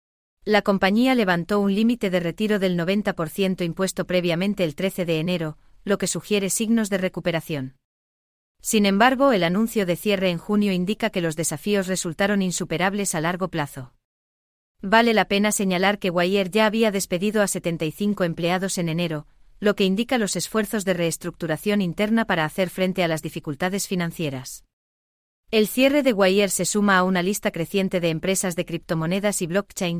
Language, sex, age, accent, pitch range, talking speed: English, female, 30-49, Spanish, 170-205 Hz, 165 wpm